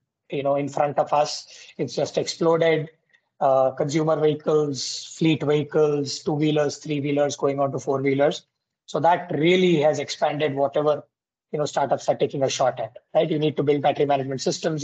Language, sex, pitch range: English, male, 145-165 Hz